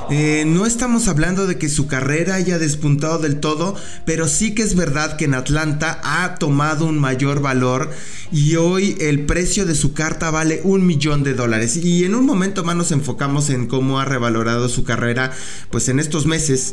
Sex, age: male, 20-39